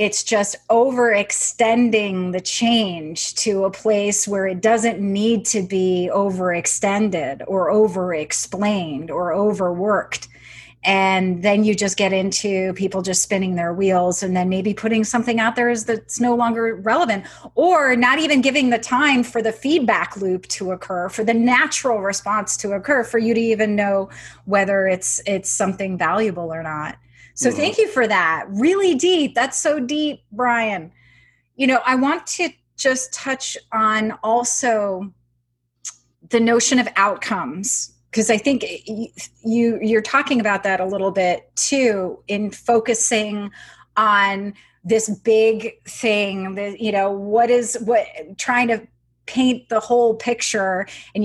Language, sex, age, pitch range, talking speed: English, female, 30-49, 190-235 Hz, 150 wpm